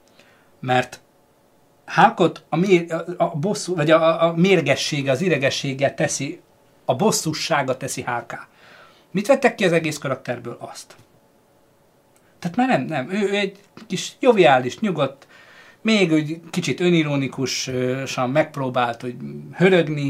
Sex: male